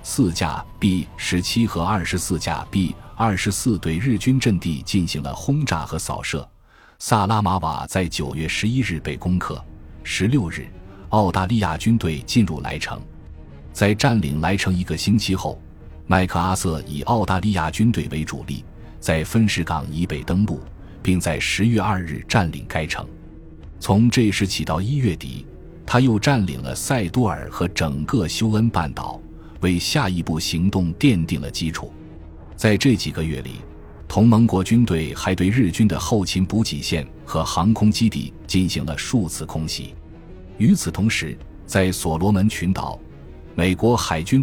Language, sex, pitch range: Chinese, male, 80-110 Hz